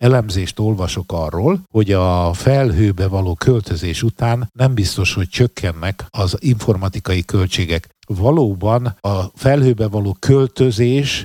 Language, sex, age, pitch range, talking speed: Hungarian, male, 60-79, 100-130 Hz, 110 wpm